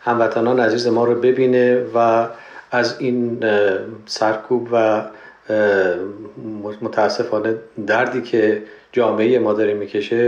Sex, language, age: male, Persian, 40-59